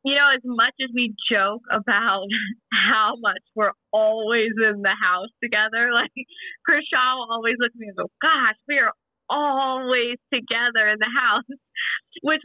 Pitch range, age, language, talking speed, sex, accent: 185-230 Hz, 20-39, English, 160 wpm, female, American